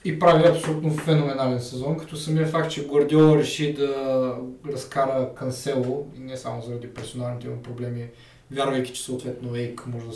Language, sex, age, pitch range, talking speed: Bulgarian, male, 20-39, 125-145 Hz, 155 wpm